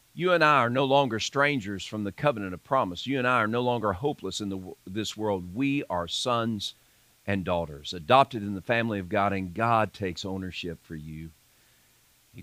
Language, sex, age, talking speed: English, male, 50-69, 200 wpm